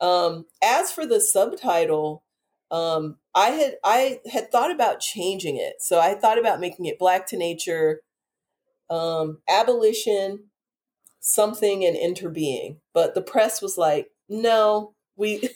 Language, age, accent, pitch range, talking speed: English, 30-49, American, 155-230 Hz, 135 wpm